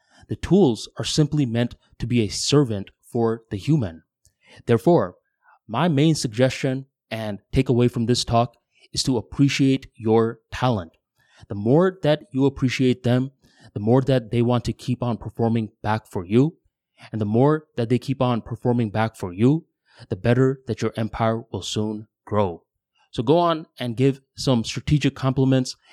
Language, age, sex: English, 20-39, male